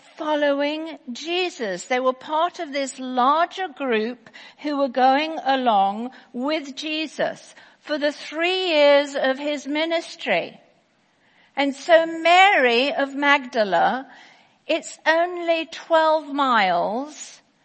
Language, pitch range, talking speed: English, 255-310 Hz, 105 wpm